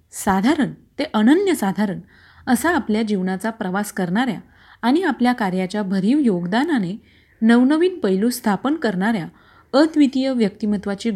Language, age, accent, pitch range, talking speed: Marathi, 40-59, native, 195-260 Hz, 100 wpm